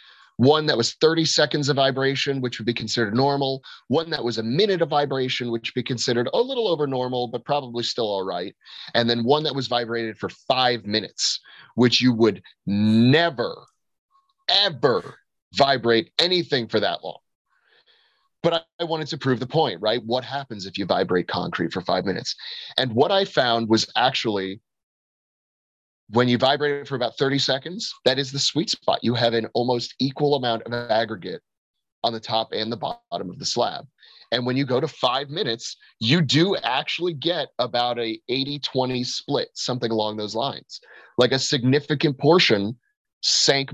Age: 30-49